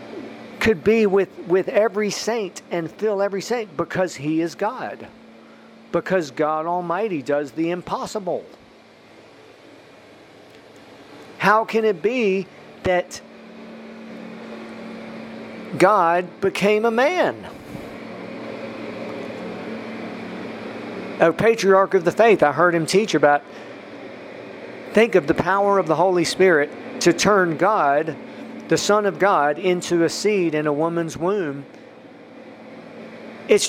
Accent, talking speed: American, 110 wpm